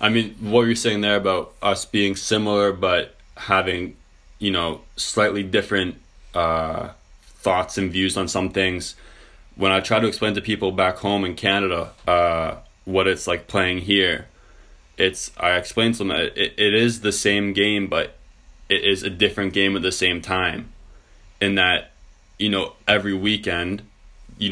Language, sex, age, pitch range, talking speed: English, male, 20-39, 90-100 Hz, 170 wpm